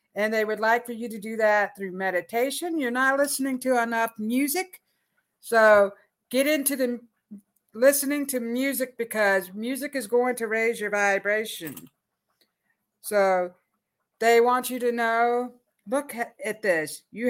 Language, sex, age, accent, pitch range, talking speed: English, female, 50-69, American, 215-285 Hz, 145 wpm